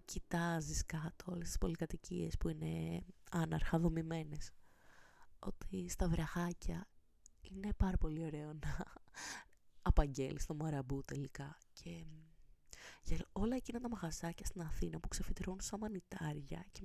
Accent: native